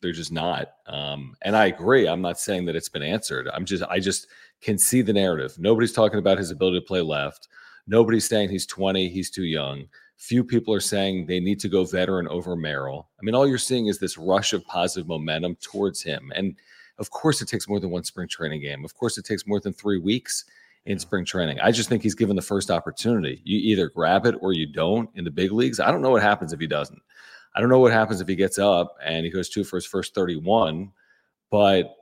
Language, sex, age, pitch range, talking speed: English, male, 40-59, 90-105 Hz, 235 wpm